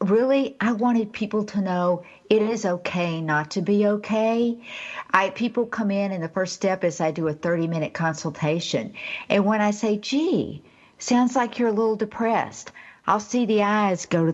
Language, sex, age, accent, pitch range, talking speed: English, female, 60-79, American, 170-235 Hz, 190 wpm